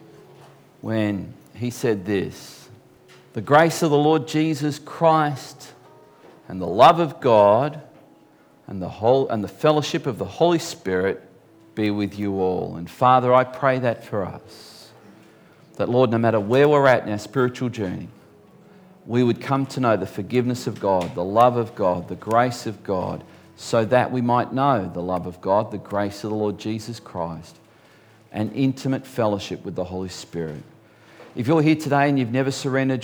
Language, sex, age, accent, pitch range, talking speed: English, male, 40-59, Australian, 100-130 Hz, 175 wpm